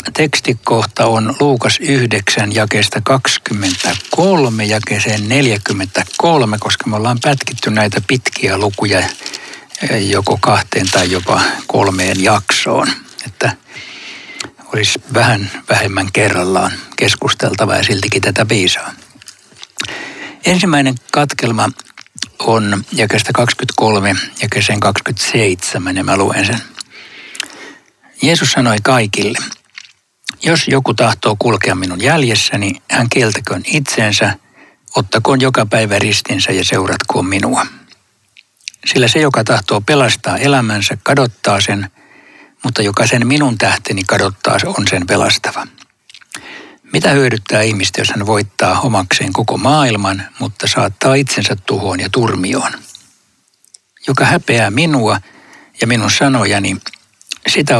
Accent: native